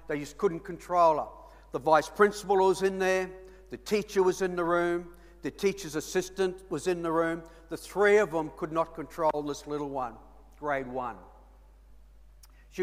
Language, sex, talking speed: English, male, 175 wpm